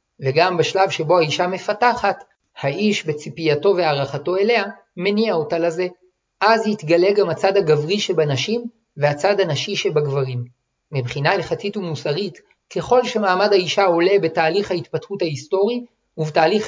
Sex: male